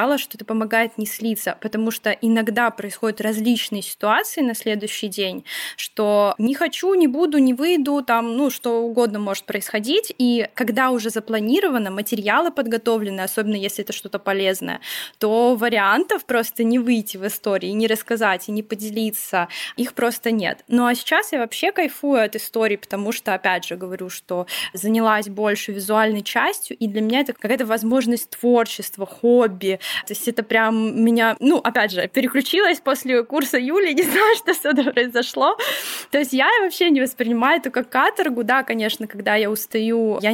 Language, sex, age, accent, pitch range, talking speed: Russian, female, 10-29, native, 215-265 Hz, 165 wpm